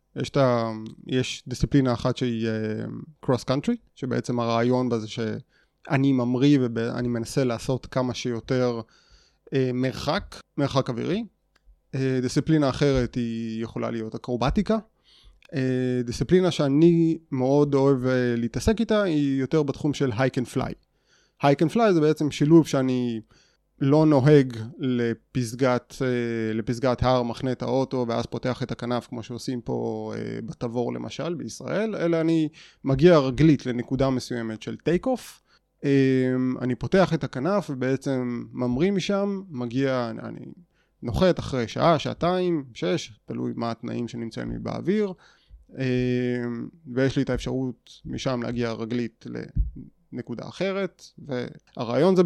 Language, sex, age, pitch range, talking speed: Hebrew, male, 30-49, 120-150 Hz, 115 wpm